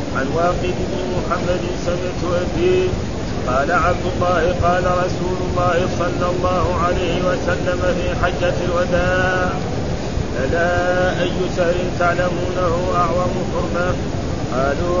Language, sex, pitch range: Arabic, male, 175-180 Hz